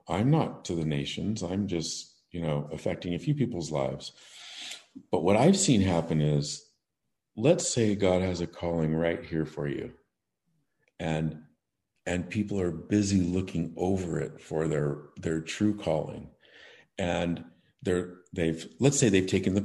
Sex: male